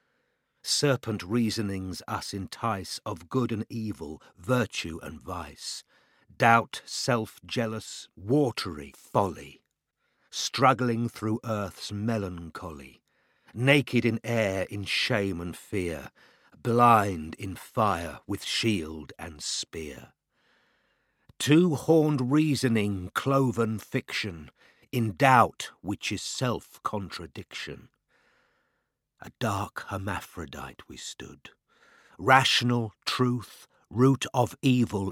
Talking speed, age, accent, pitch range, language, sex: 90 wpm, 50-69, British, 90-120 Hz, English, male